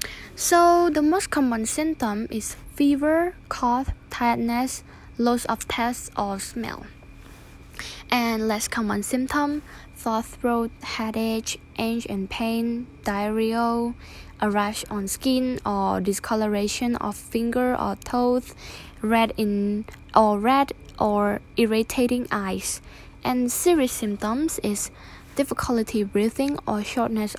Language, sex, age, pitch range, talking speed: English, female, 10-29, 205-250 Hz, 110 wpm